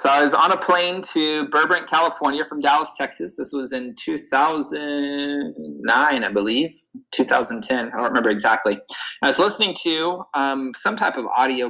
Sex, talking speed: male, 165 wpm